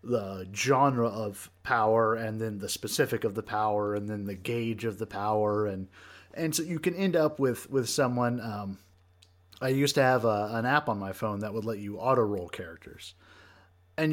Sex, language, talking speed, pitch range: male, English, 200 wpm, 95-135 Hz